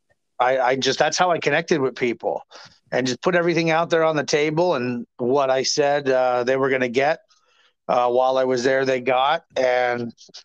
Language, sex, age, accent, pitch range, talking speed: English, male, 30-49, American, 125-150 Hz, 205 wpm